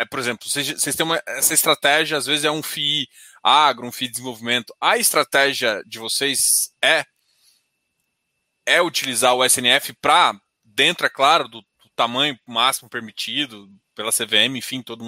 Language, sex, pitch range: Portuguese, male, 130-200 Hz